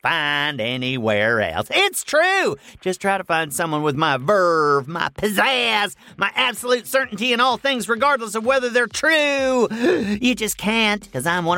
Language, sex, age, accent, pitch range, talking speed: English, male, 40-59, American, 170-245 Hz, 165 wpm